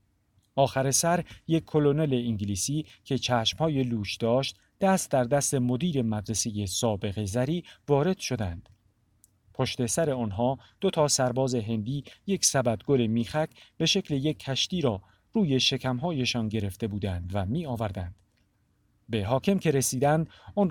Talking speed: 130 wpm